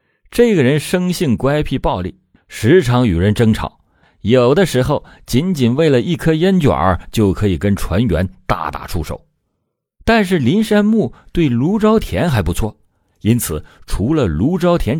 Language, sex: Chinese, male